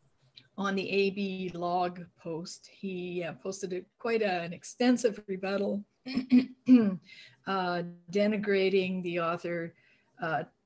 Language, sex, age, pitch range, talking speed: English, female, 50-69, 180-215 Hz, 90 wpm